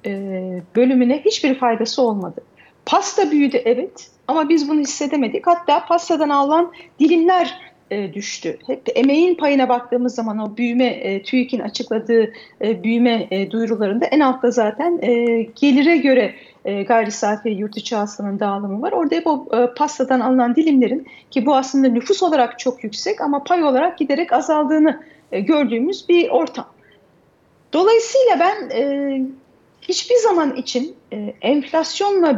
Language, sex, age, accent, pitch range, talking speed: Turkish, female, 40-59, native, 240-320 Hz, 135 wpm